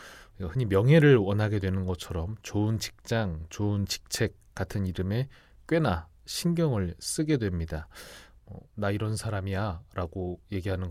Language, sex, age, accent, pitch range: Korean, male, 30-49, native, 90-125 Hz